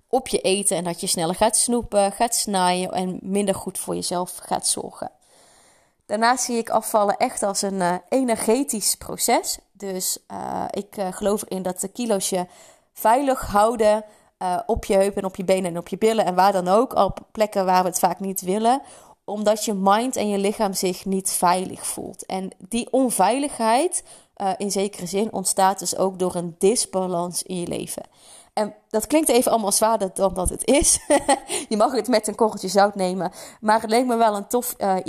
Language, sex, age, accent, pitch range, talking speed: Dutch, female, 20-39, Dutch, 190-235 Hz, 195 wpm